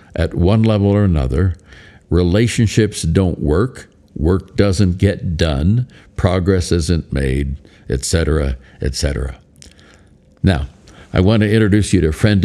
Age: 60-79